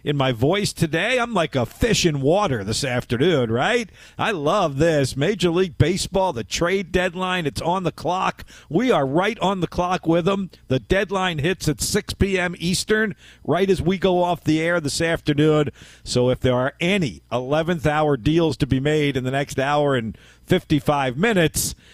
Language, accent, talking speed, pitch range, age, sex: English, American, 185 wpm, 125-175 Hz, 50-69, male